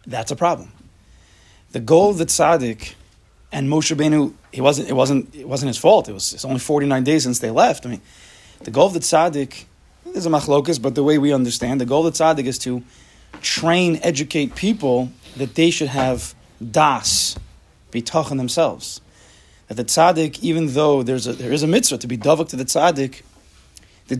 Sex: male